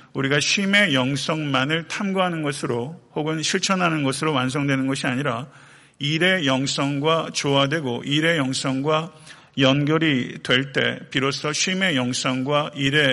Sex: male